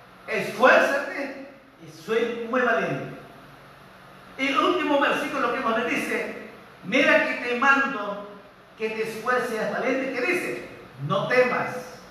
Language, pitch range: Spanish, 185-250 Hz